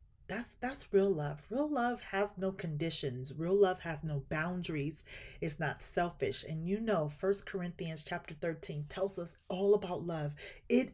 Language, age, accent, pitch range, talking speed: English, 30-49, American, 150-200 Hz, 165 wpm